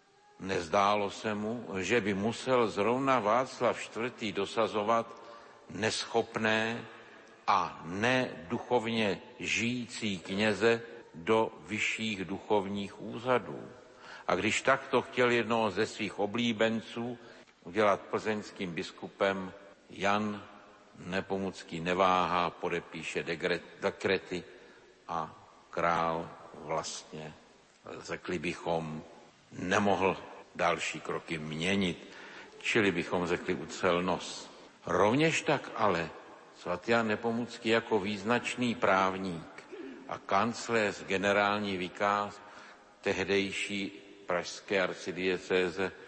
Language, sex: Slovak, male